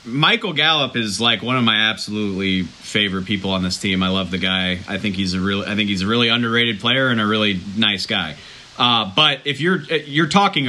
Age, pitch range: 40-59, 115-155 Hz